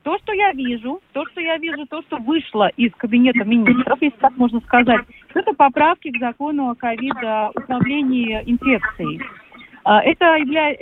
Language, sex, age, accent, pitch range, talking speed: Russian, female, 30-49, native, 230-285 Hz, 155 wpm